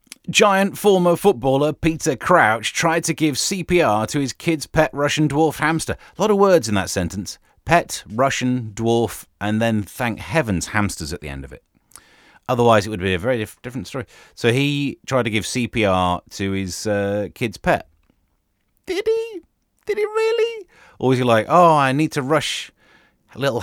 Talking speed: 180 wpm